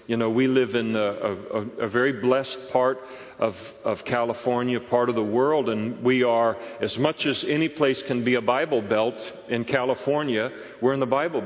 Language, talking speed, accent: English, 195 wpm, American